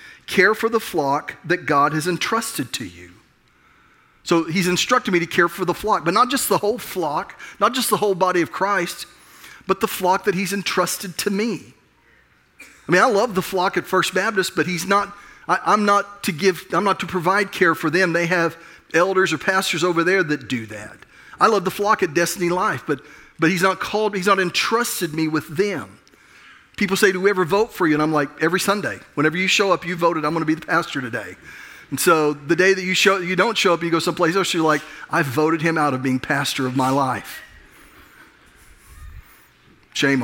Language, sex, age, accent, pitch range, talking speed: English, male, 40-59, American, 165-205 Hz, 220 wpm